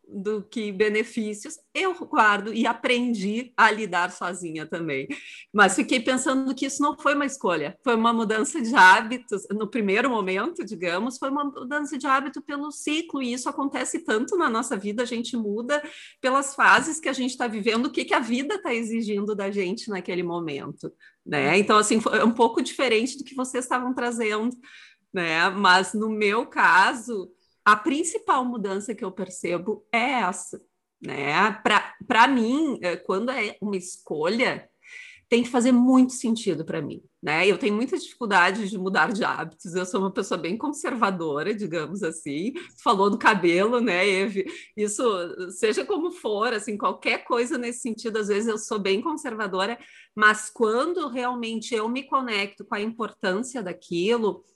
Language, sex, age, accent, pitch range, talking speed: Portuguese, female, 40-59, Brazilian, 200-270 Hz, 165 wpm